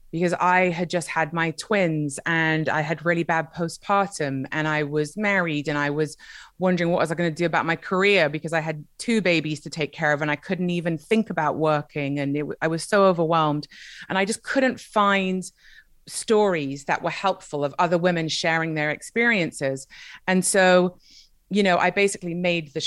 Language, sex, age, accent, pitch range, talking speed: English, female, 30-49, British, 155-180 Hz, 190 wpm